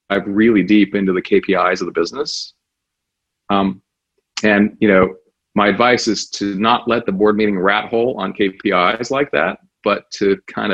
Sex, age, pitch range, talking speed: male, 40-59, 100-120 Hz, 170 wpm